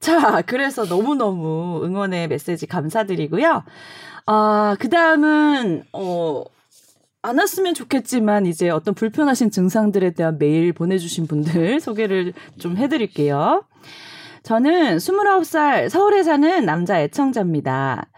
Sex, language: female, Korean